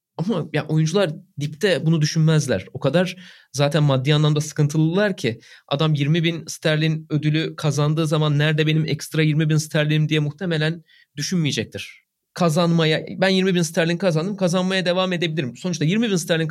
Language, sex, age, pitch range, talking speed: Turkish, male, 30-49, 145-185 Hz, 135 wpm